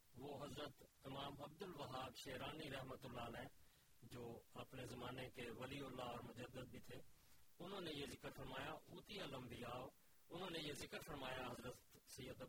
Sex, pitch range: male, 130-180 Hz